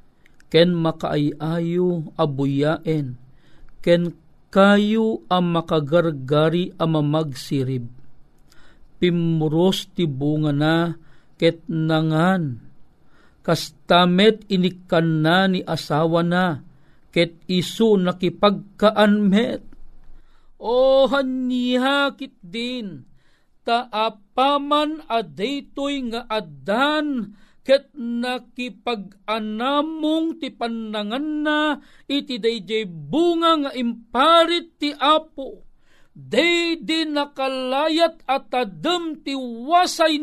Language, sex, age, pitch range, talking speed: Filipino, male, 50-69, 175-285 Hz, 75 wpm